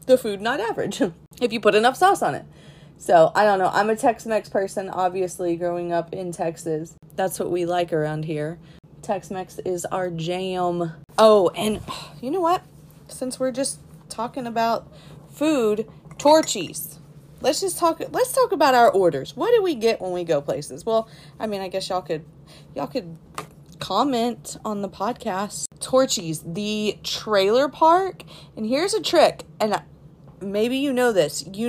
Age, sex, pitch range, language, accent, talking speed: 30-49, female, 165-245 Hz, English, American, 170 wpm